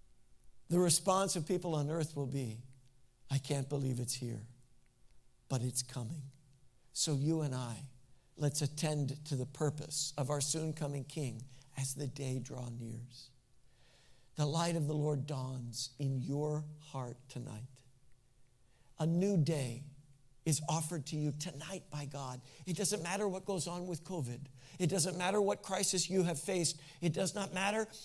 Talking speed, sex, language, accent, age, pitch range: 160 wpm, male, English, American, 60-79, 130-180 Hz